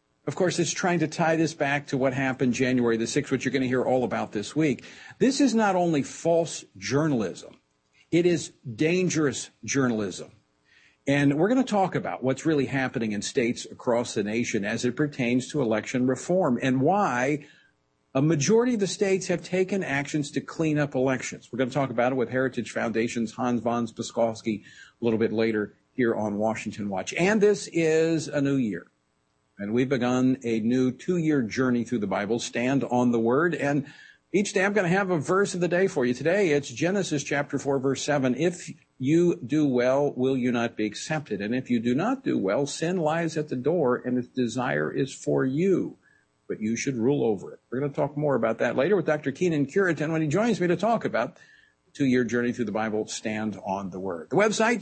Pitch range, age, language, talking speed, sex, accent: 120-165 Hz, 50-69, English, 210 wpm, male, American